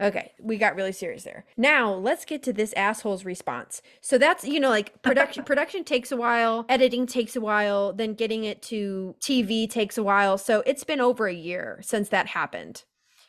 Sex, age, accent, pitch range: female, 20-39, American, 200-255 Hz